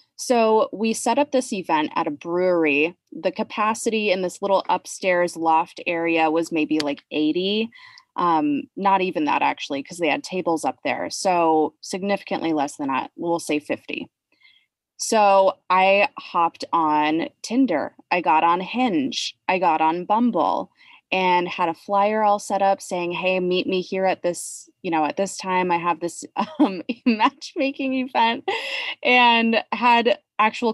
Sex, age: female, 20-39